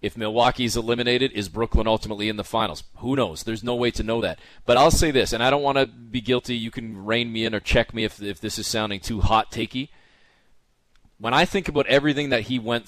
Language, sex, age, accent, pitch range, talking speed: English, male, 30-49, American, 110-130 Hz, 240 wpm